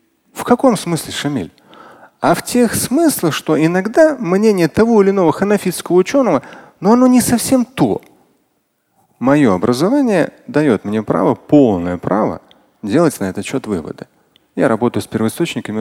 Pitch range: 135-225 Hz